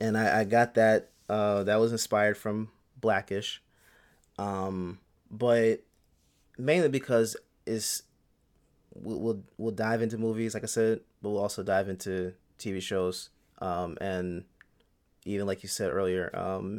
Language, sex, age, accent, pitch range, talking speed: English, male, 30-49, American, 95-110 Hz, 140 wpm